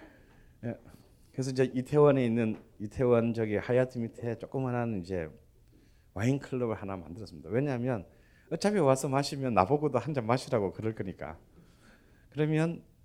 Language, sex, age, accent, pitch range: Korean, male, 40-59, native, 100-135 Hz